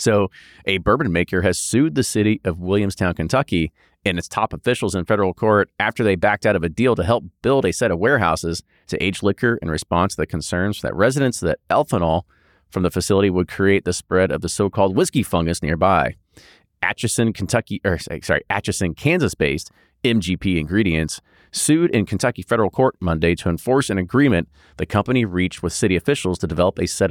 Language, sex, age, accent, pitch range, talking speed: English, male, 30-49, American, 85-110 Hz, 190 wpm